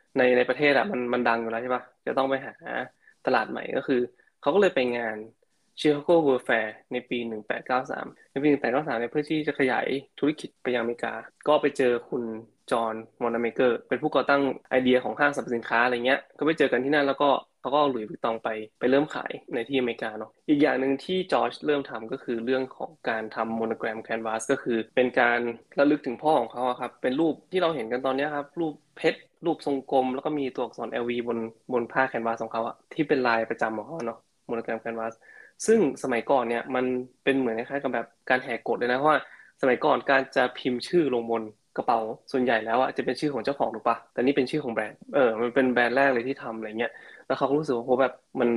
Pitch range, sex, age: 115-140 Hz, male, 20-39